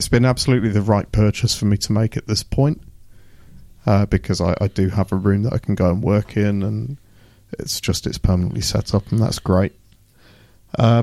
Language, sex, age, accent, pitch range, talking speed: English, male, 30-49, British, 95-115 Hz, 210 wpm